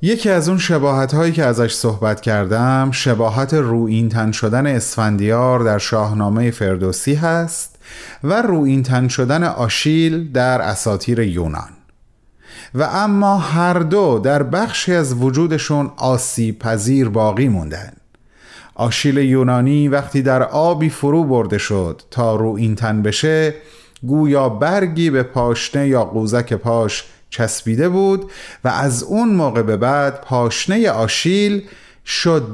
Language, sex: Persian, male